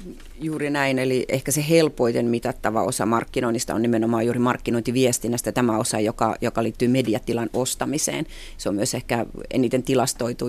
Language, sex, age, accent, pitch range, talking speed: Finnish, female, 30-49, native, 120-135 Hz, 150 wpm